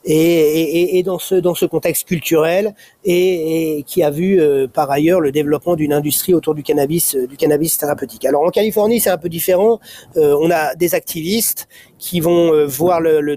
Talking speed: 200 wpm